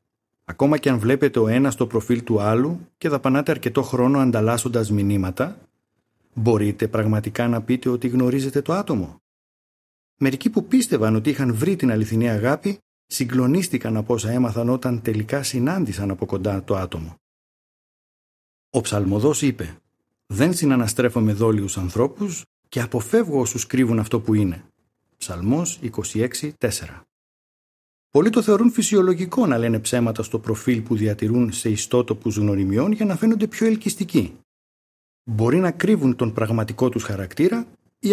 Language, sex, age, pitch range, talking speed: Greek, male, 50-69, 110-150 Hz, 140 wpm